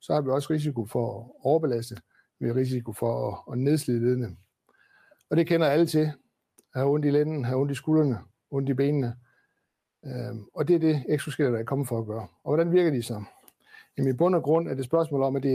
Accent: native